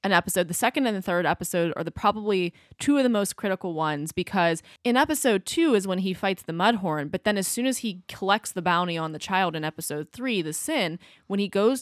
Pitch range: 165-195 Hz